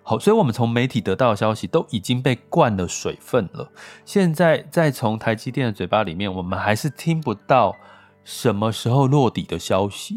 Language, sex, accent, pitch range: Chinese, male, native, 100-140 Hz